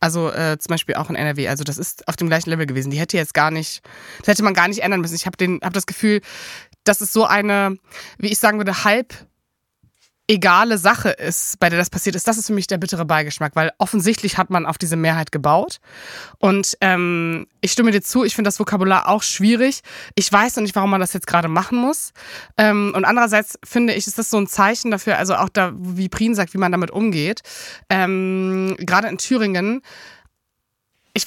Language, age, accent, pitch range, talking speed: German, 20-39, German, 175-210 Hz, 220 wpm